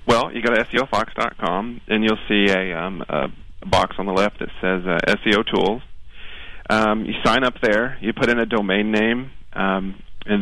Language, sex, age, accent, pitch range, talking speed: English, male, 40-59, American, 100-115 Hz, 190 wpm